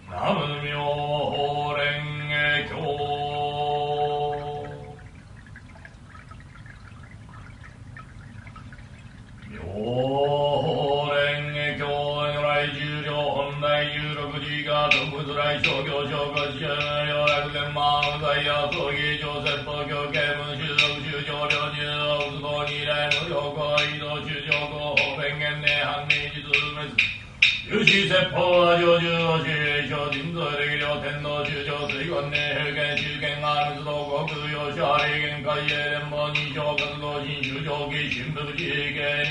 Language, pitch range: Japanese, 145-150 Hz